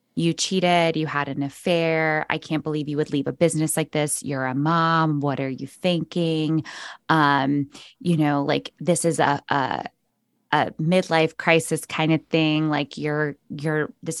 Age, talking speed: 20-39, 175 wpm